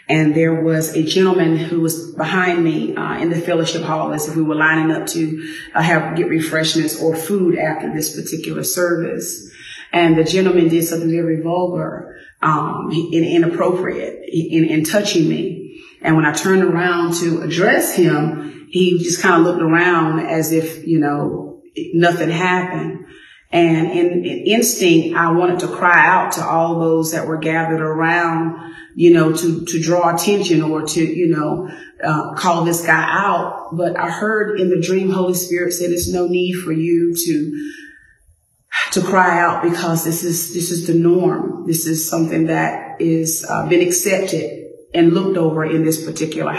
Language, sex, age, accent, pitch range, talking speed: English, female, 40-59, American, 160-175 Hz, 175 wpm